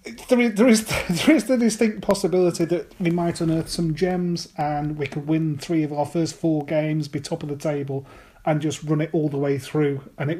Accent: British